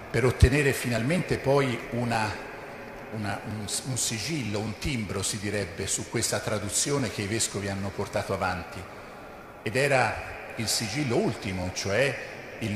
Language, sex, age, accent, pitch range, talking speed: Italian, male, 50-69, native, 100-130 Hz, 125 wpm